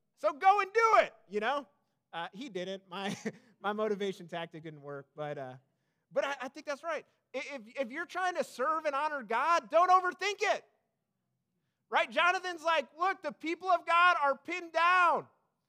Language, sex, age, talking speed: English, male, 30-49, 180 wpm